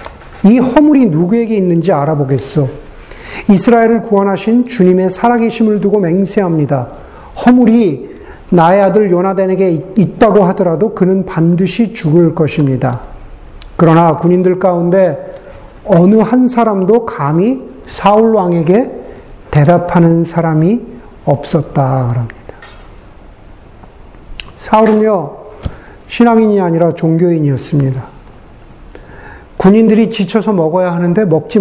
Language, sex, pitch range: Korean, male, 165-220 Hz